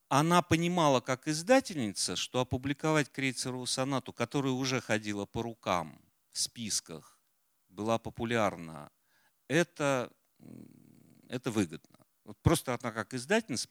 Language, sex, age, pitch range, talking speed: Russian, male, 50-69, 95-145 Hz, 105 wpm